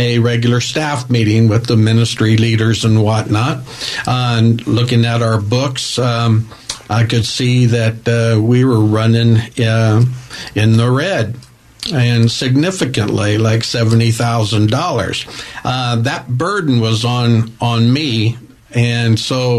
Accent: American